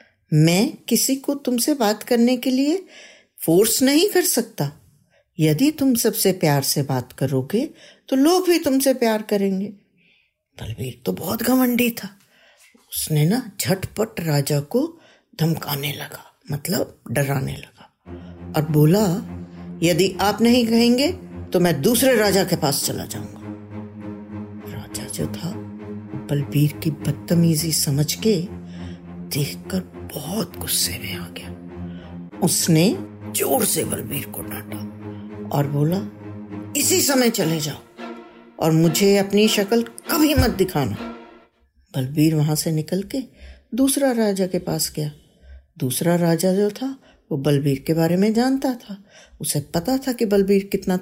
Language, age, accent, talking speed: Hindi, 50-69, native, 130 wpm